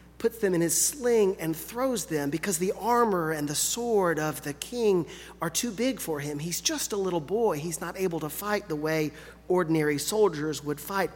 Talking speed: 205 wpm